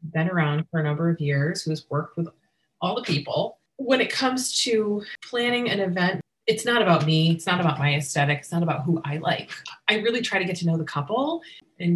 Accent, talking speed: American, 230 wpm